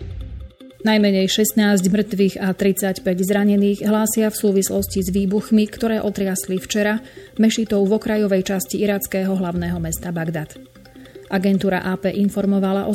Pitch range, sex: 185-210 Hz, female